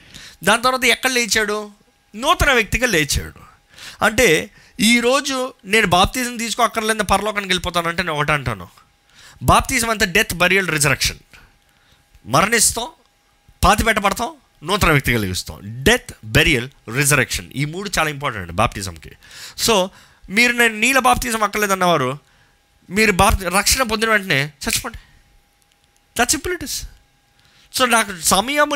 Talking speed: 120 wpm